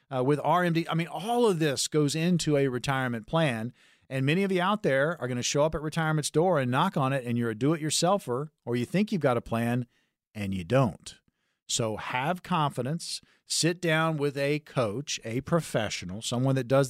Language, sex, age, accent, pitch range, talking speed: English, male, 40-59, American, 125-165 Hz, 205 wpm